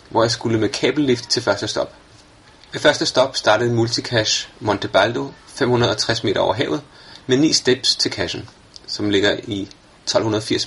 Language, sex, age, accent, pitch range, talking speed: Danish, male, 30-49, native, 105-125 Hz, 155 wpm